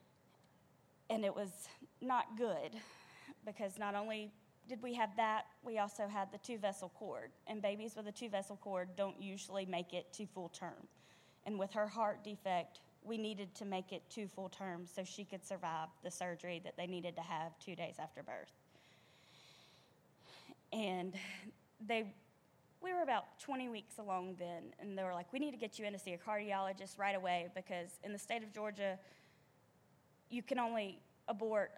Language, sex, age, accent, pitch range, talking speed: English, female, 20-39, American, 185-220 Hz, 180 wpm